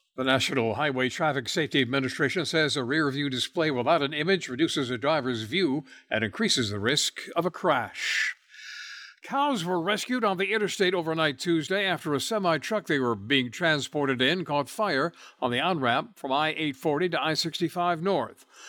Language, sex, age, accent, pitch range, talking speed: English, male, 60-79, American, 130-180 Hz, 160 wpm